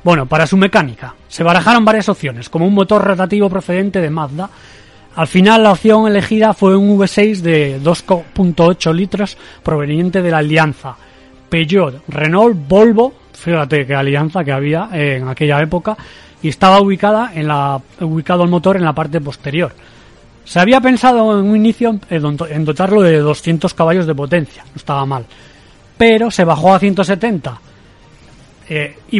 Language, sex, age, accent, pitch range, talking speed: Spanish, male, 30-49, Spanish, 150-195 Hz, 160 wpm